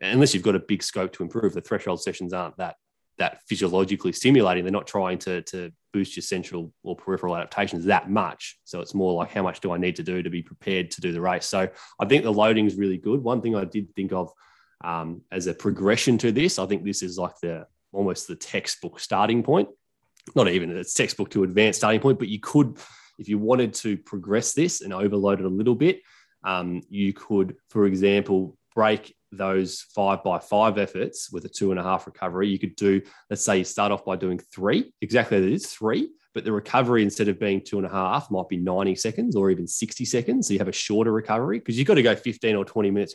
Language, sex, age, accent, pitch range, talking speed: English, male, 20-39, Australian, 95-110 Hz, 230 wpm